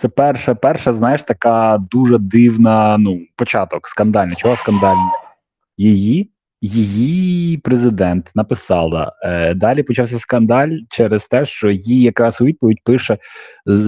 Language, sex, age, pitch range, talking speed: Ukrainian, male, 20-39, 110-130 Hz, 125 wpm